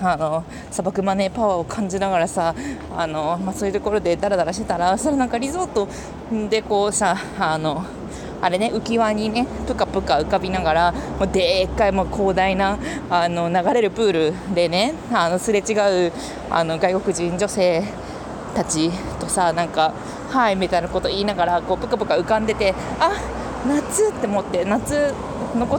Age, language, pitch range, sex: 20-39, Japanese, 175-235 Hz, female